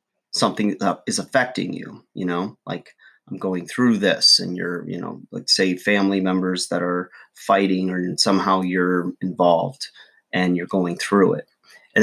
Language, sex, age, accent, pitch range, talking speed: English, male, 30-49, American, 90-105 Hz, 165 wpm